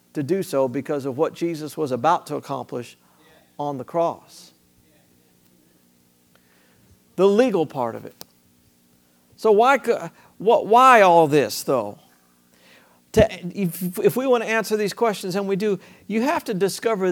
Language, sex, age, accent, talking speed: English, male, 50-69, American, 135 wpm